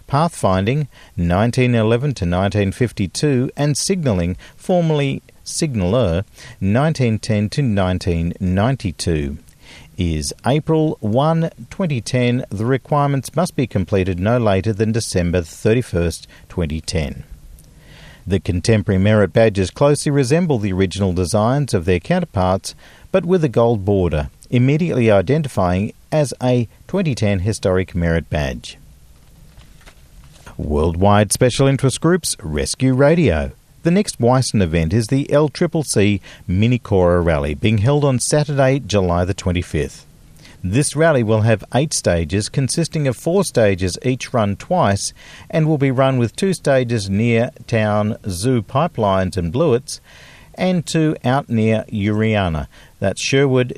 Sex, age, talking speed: male, 50-69, 115 wpm